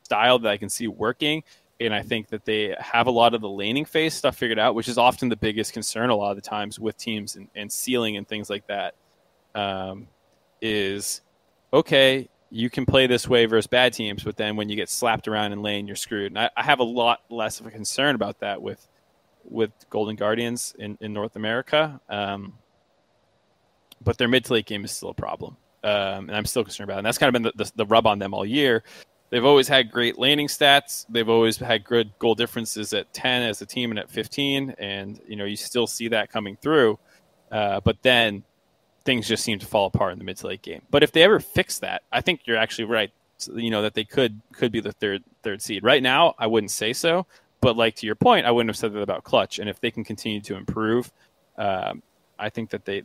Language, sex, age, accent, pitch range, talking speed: English, male, 20-39, American, 105-125 Hz, 235 wpm